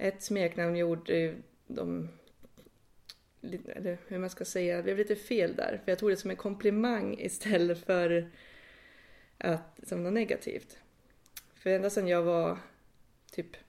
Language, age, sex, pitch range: Swedish, 20-39, female, 165-195 Hz